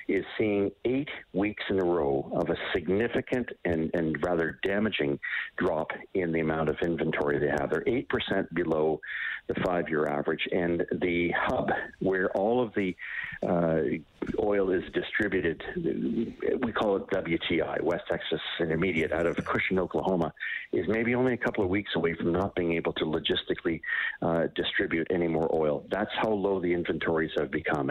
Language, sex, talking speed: English, male, 165 wpm